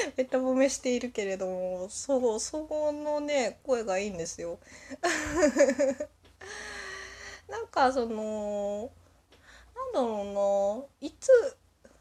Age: 20-39